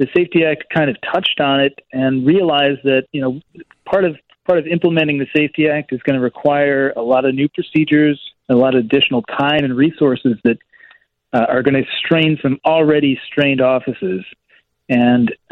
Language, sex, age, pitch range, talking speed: English, male, 40-59, 130-150 Hz, 185 wpm